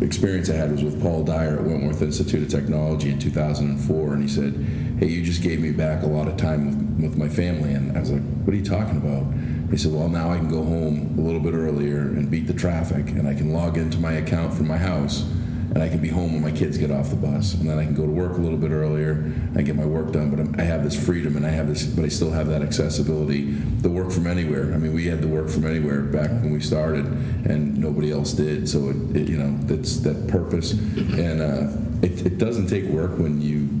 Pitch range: 75-85 Hz